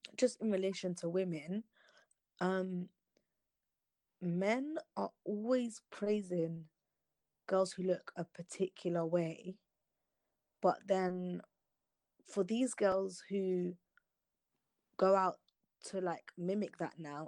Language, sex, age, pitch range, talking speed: English, female, 20-39, 165-185 Hz, 100 wpm